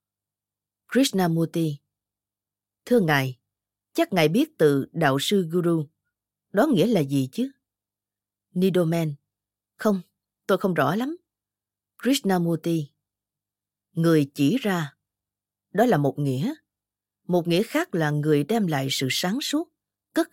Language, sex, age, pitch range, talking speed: Vietnamese, female, 20-39, 140-225 Hz, 120 wpm